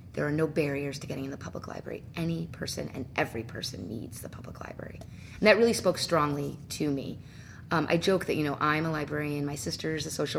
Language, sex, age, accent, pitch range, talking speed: English, female, 30-49, American, 140-180 Hz, 225 wpm